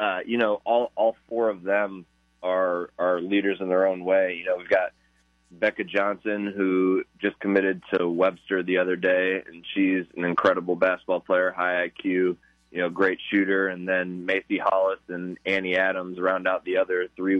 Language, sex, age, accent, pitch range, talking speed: English, male, 20-39, American, 90-95 Hz, 185 wpm